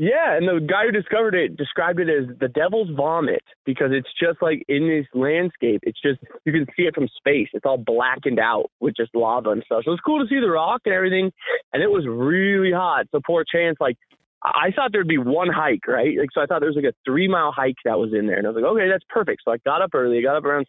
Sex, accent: male, American